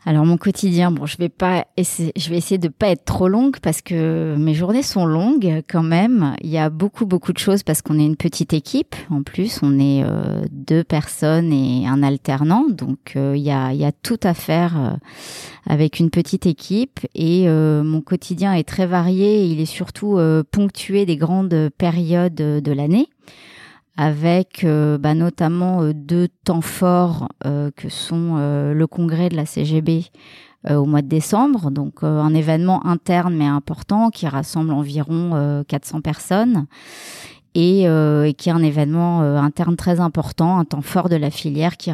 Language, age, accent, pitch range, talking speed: French, 30-49, French, 150-180 Hz, 185 wpm